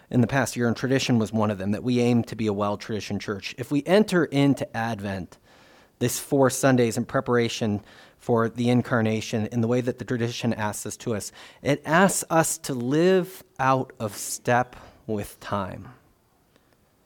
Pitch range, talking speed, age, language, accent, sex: 110-145 Hz, 180 wpm, 30-49, English, American, male